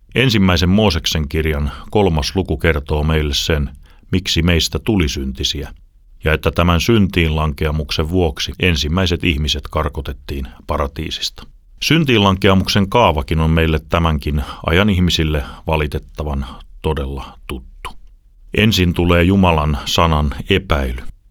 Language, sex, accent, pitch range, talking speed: Finnish, male, native, 75-90 Hz, 100 wpm